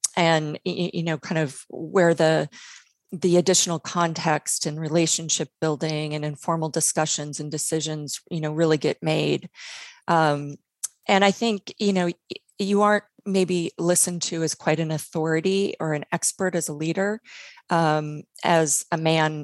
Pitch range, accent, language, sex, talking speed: 155-180 Hz, American, English, female, 150 wpm